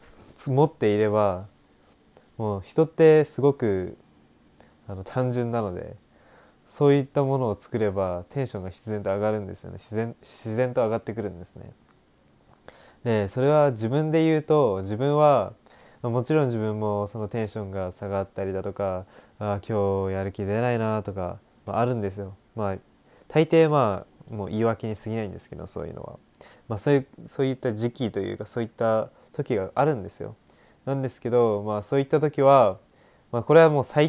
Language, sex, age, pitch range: Japanese, male, 20-39, 100-135 Hz